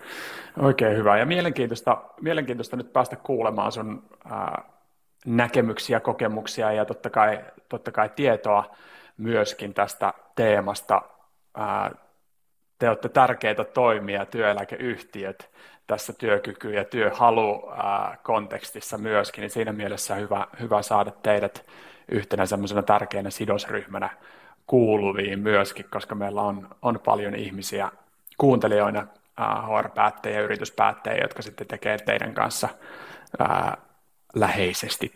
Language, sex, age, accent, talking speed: Finnish, male, 30-49, native, 105 wpm